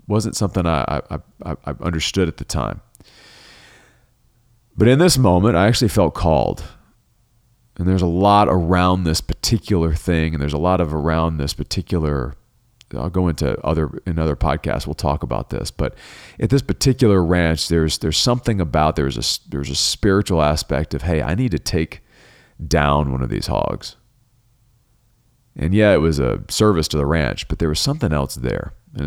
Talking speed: 180 wpm